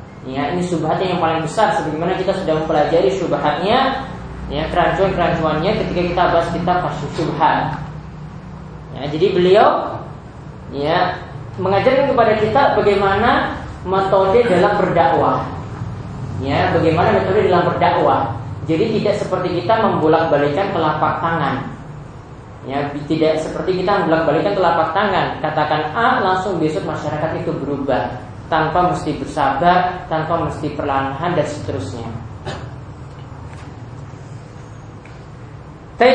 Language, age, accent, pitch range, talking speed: Indonesian, 20-39, native, 140-185 Hz, 105 wpm